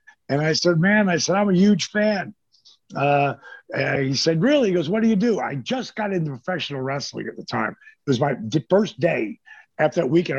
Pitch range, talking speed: 150-215 Hz, 220 wpm